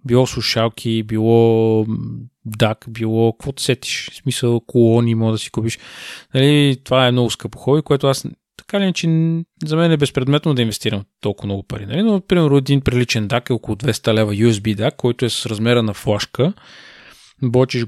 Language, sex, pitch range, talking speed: Bulgarian, male, 115-140 Hz, 175 wpm